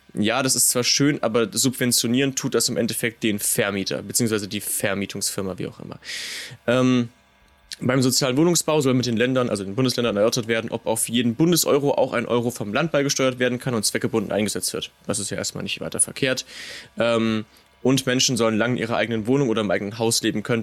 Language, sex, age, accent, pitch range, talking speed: German, male, 20-39, German, 110-135 Hz, 205 wpm